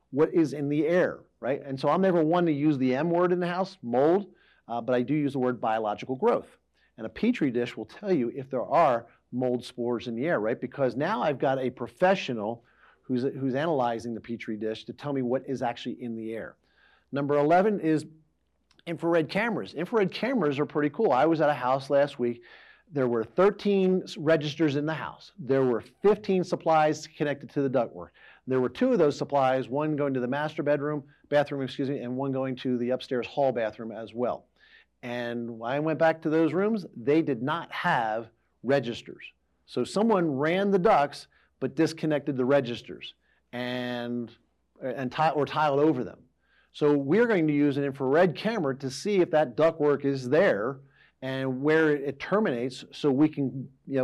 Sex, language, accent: male, English, American